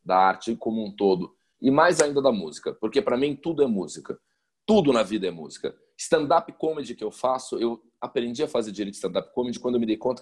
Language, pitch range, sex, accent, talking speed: Portuguese, 105-145 Hz, male, Brazilian, 230 wpm